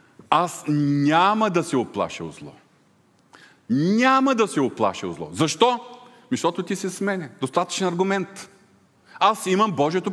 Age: 40-59